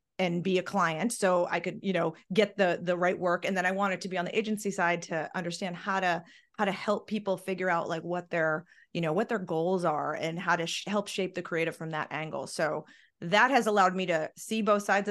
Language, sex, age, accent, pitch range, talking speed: English, female, 30-49, American, 170-210 Hz, 250 wpm